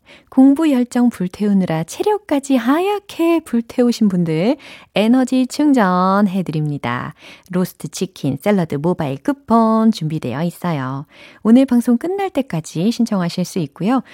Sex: female